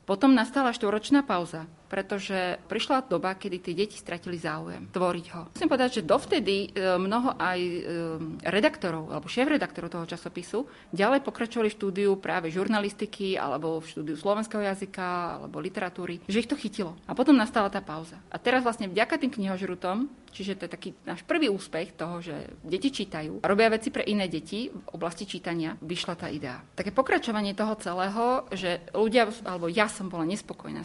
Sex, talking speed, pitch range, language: female, 170 wpm, 175-230 Hz, Slovak